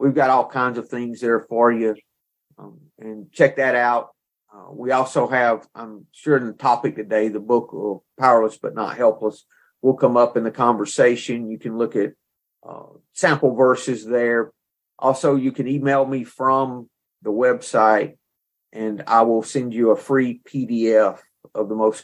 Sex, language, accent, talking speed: male, English, American, 170 wpm